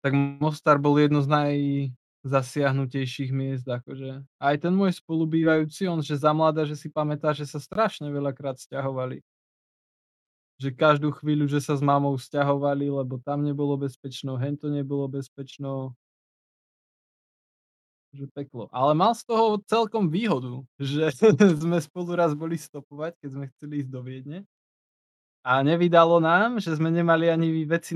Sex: male